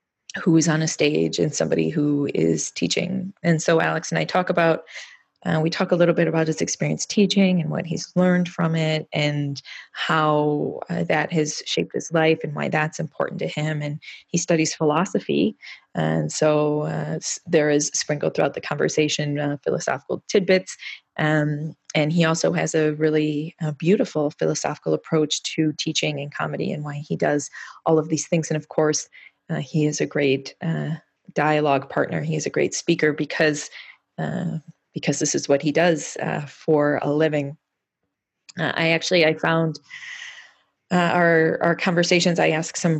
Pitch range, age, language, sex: 150-170 Hz, 20-39, English, female